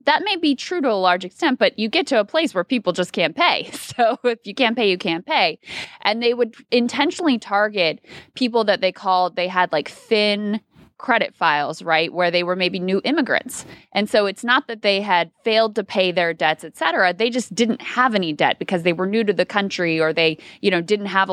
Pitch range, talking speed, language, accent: 165-220 Hz, 230 wpm, English, American